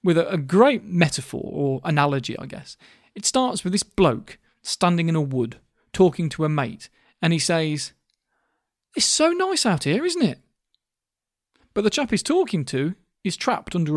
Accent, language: British, English